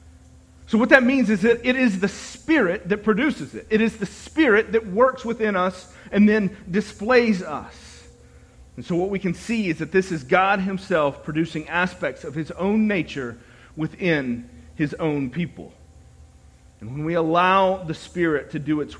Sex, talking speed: male, 175 wpm